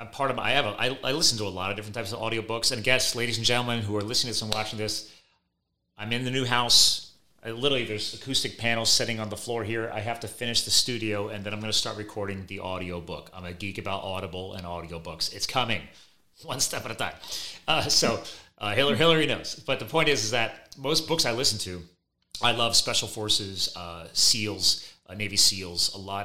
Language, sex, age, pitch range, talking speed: English, male, 30-49, 95-115 Hz, 235 wpm